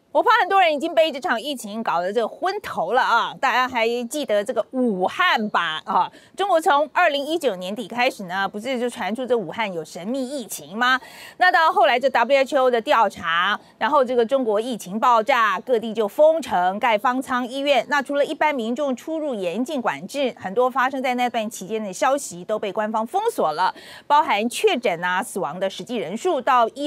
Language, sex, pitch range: Chinese, female, 215-315 Hz